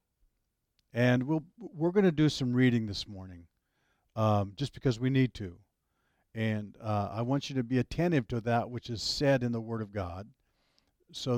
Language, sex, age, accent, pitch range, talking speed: English, male, 50-69, American, 115-145 Hz, 185 wpm